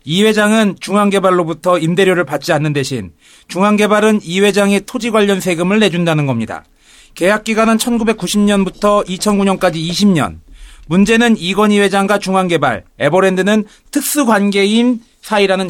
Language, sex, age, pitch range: Korean, male, 40-59, 180-225 Hz